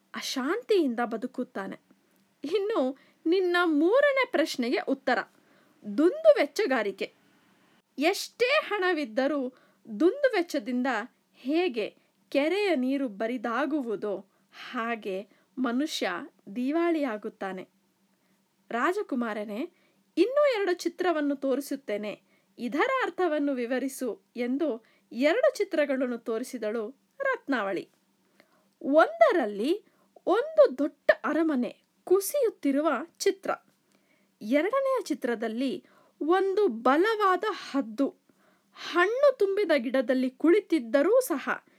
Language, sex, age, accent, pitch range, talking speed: Kannada, female, 20-39, native, 235-335 Hz, 70 wpm